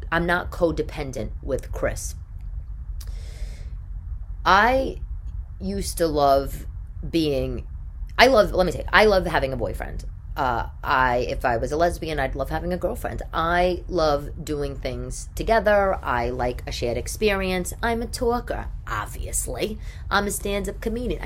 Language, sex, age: English, female, 30-49